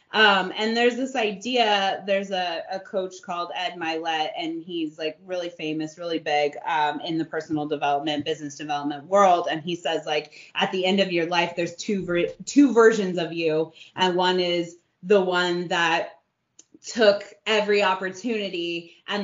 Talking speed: 165 wpm